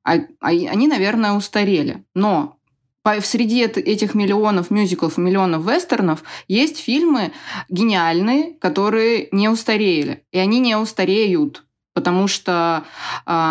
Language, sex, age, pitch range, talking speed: Russian, female, 20-39, 180-225 Hz, 100 wpm